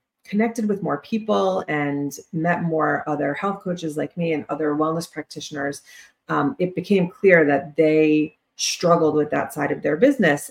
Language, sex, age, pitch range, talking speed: English, female, 30-49, 150-180 Hz, 165 wpm